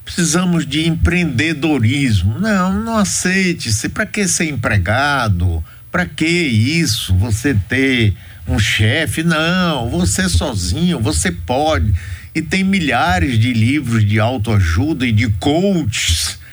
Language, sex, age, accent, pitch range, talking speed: Portuguese, male, 60-79, Brazilian, 100-160 Hz, 115 wpm